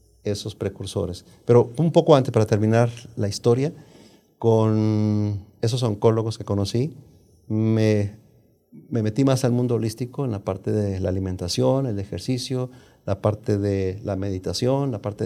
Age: 40-59